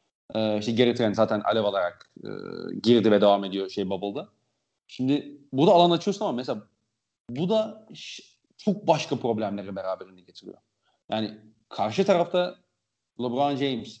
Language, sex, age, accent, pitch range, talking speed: Turkish, male, 40-59, native, 115-155 Hz, 135 wpm